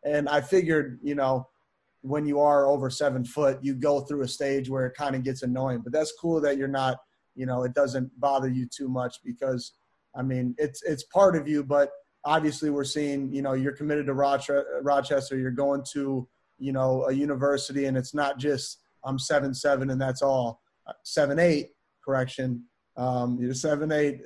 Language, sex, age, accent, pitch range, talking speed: English, male, 30-49, American, 130-150 Hz, 195 wpm